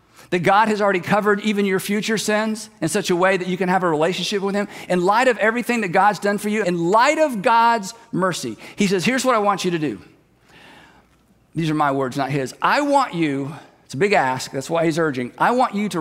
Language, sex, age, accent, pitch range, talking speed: English, male, 50-69, American, 160-230 Hz, 245 wpm